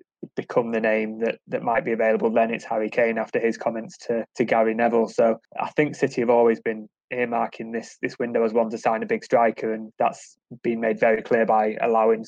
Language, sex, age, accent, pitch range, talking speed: English, male, 20-39, British, 115-125 Hz, 220 wpm